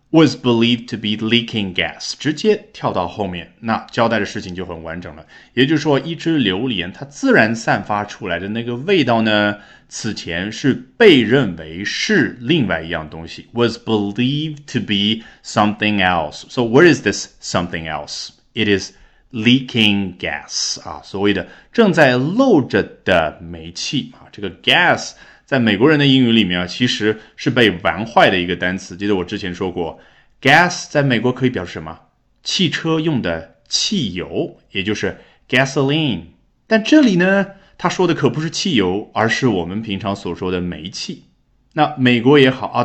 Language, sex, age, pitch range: Chinese, male, 20-39, 95-135 Hz